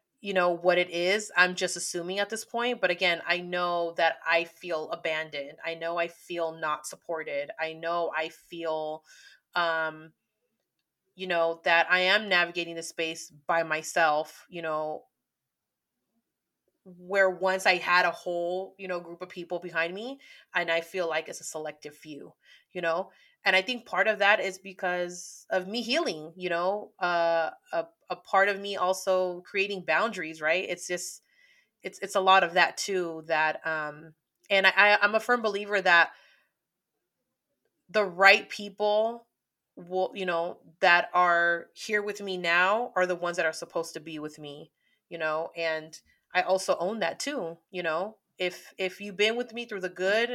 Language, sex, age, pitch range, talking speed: English, female, 30-49, 165-195 Hz, 175 wpm